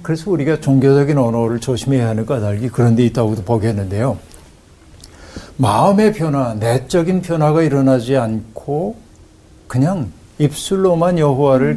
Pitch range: 105-150 Hz